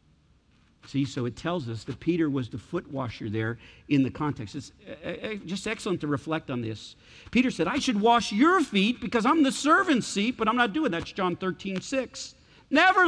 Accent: American